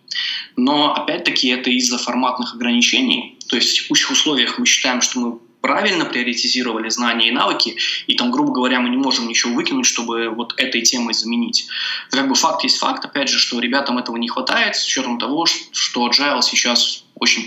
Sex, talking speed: male, 180 wpm